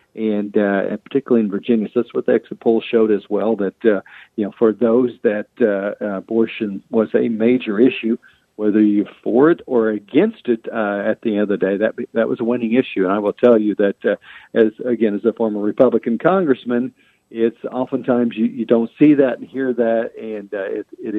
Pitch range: 105-125 Hz